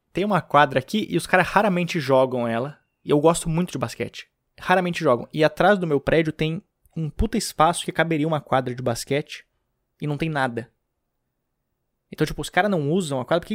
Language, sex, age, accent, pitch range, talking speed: Portuguese, male, 20-39, Brazilian, 135-170 Hz, 210 wpm